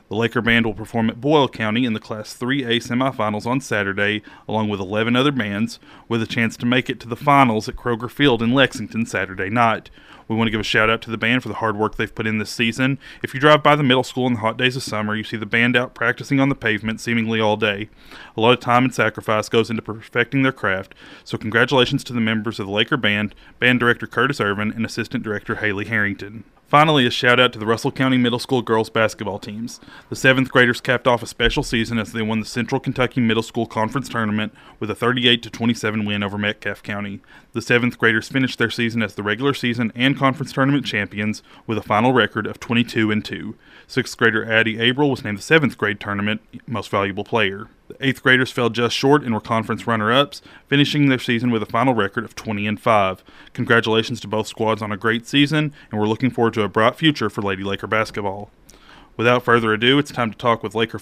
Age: 30-49